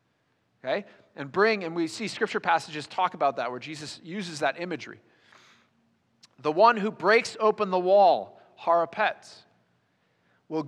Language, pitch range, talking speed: English, 155-200 Hz, 140 wpm